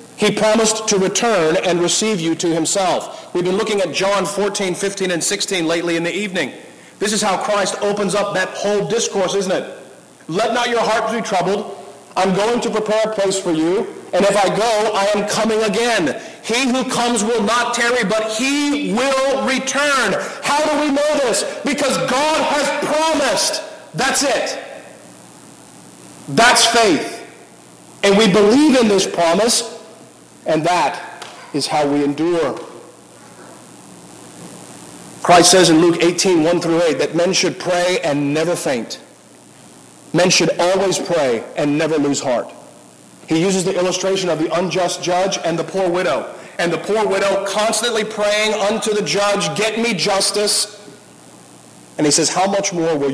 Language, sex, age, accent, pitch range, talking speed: English, male, 50-69, American, 170-225 Hz, 165 wpm